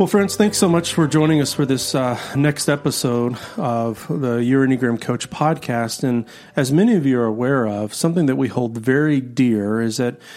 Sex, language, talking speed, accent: male, English, 205 wpm, American